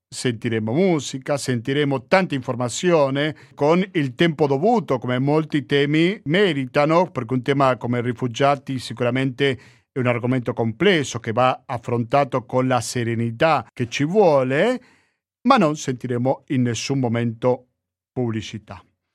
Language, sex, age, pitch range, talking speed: Italian, male, 50-69, 135-175 Hz, 120 wpm